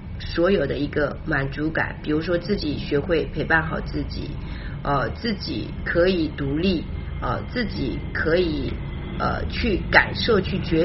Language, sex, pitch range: Chinese, female, 145-200 Hz